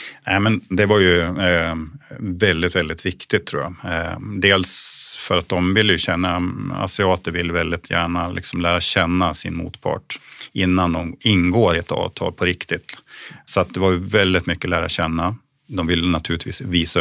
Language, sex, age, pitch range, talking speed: Swedish, male, 30-49, 85-95 Hz, 165 wpm